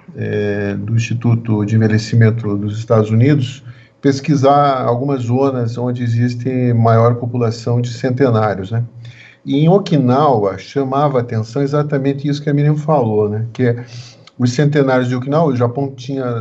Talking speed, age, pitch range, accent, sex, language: 145 wpm, 50-69, 115-140 Hz, Brazilian, male, Portuguese